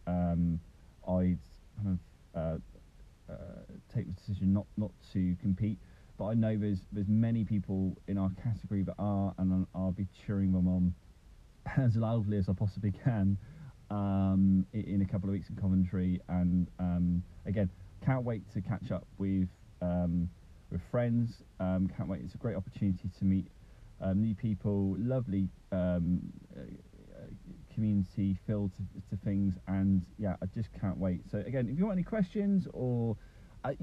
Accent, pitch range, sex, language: British, 95-115 Hz, male, English